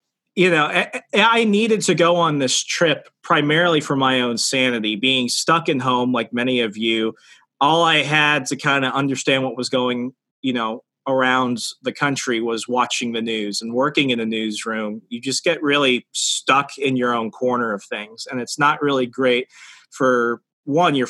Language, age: English, 30-49